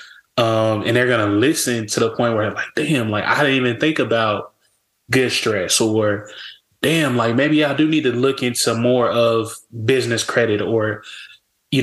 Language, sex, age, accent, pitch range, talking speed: English, male, 20-39, American, 110-125 Hz, 185 wpm